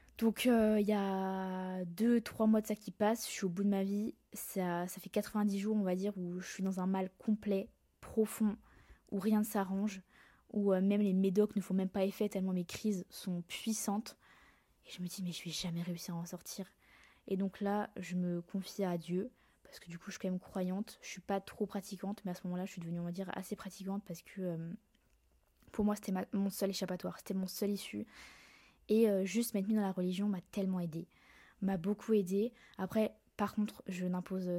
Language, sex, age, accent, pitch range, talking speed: French, female, 20-39, French, 180-210 Hz, 230 wpm